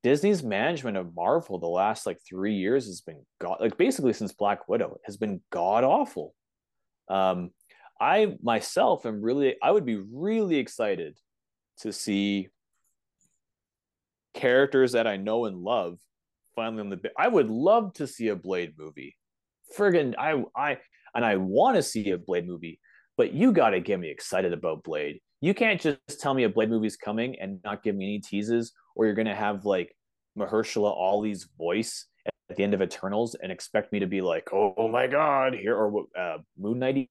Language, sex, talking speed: English, male, 185 wpm